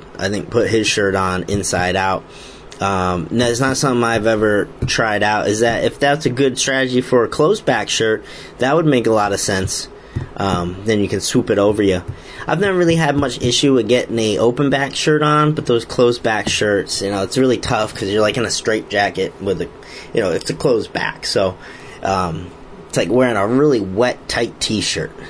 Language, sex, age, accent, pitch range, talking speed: English, male, 30-49, American, 100-135 Hz, 215 wpm